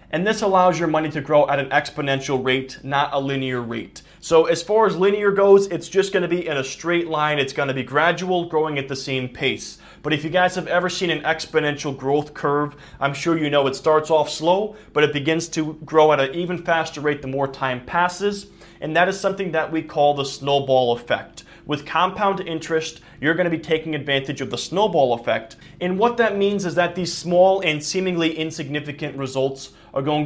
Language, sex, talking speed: English, male, 210 wpm